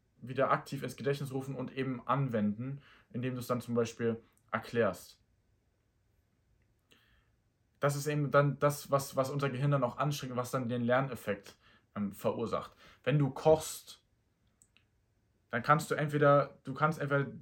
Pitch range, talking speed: 115-140 Hz, 150 wpm